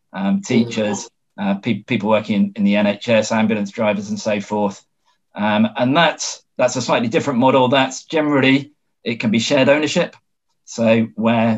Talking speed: 165 wpm